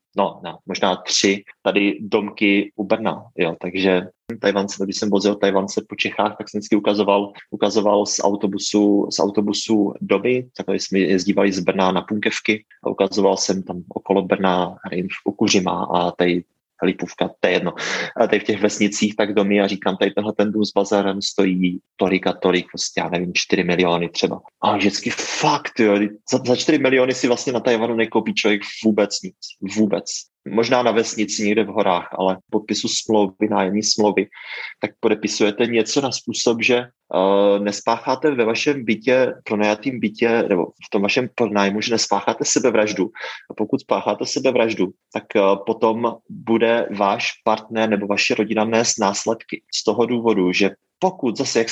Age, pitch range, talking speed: 20-39, 100-115 Hz, 165 wpm